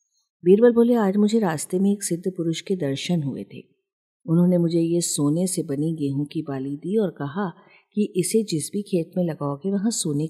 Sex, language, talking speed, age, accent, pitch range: female, Hindi, 200 wpm, 50-69, native, 150-210 Hz